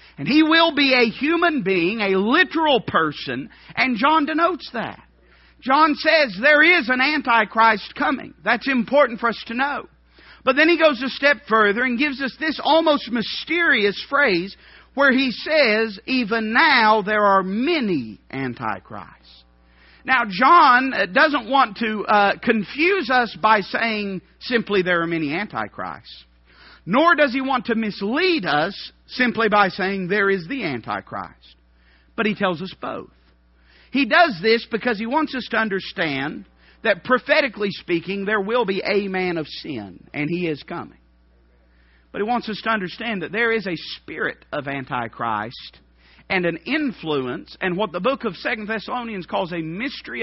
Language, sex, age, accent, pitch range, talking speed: English, male, 50-69, American, 165-260 Hz, 160 wpm